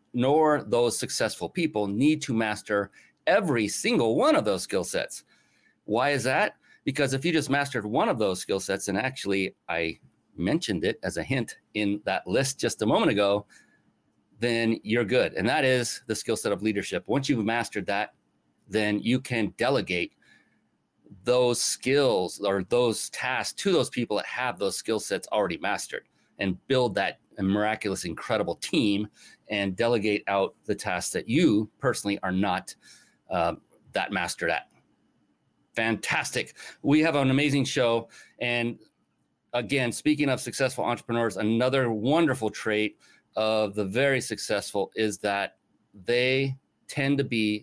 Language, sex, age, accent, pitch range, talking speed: English, male, 30-49, American, 105-130 Hz, 150 wpm